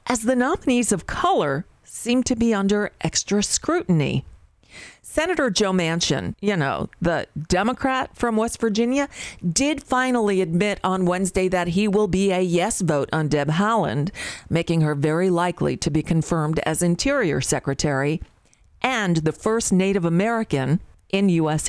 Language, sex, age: English, female, 40-59